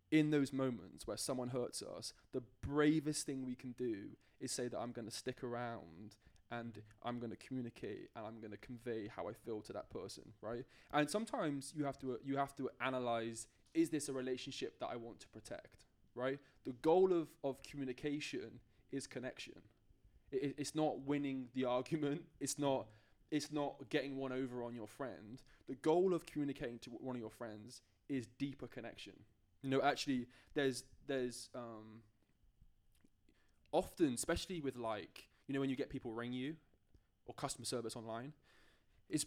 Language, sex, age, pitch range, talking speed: English, male, 20-39, 115-140 Hz, 175 wpm